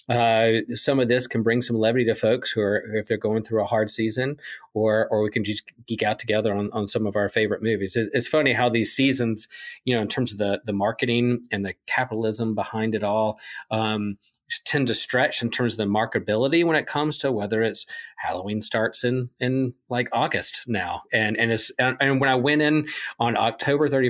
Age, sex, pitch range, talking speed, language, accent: 40-59, male, 105-125 Hz, 215 wpm, English, American